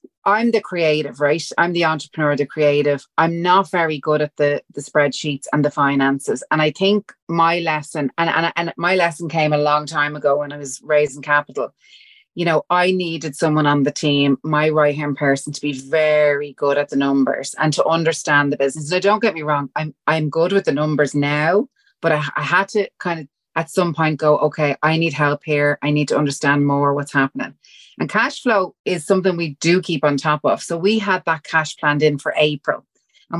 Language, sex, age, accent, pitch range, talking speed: English, female, 30-49, Irish, 145-170 Hz, 215 wpm